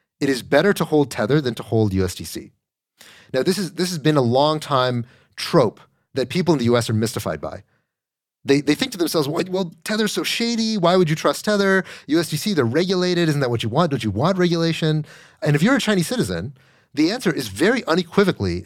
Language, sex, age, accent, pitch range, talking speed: English, male, 30-49, American, 110-165 Hz, 210 wpm